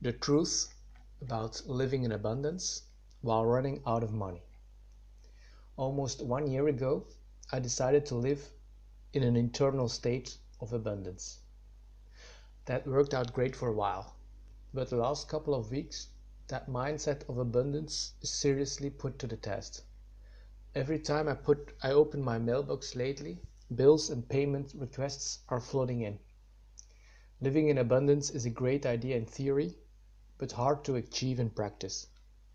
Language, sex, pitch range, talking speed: English, male, 110-140 Hz, 145 wpm